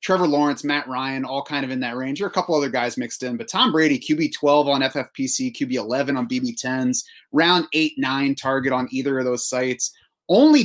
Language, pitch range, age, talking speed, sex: English, 125-155 Hz, 30-49, 210 wpm, male